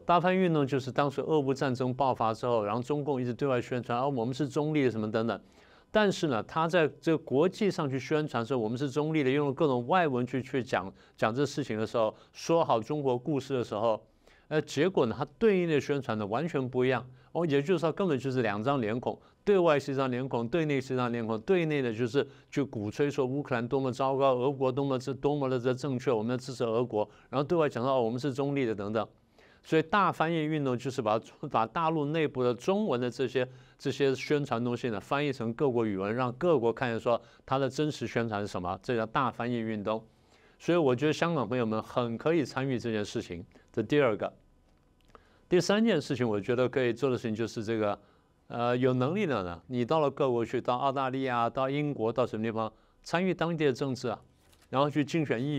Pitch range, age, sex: 115-145 Hz, 50-69, male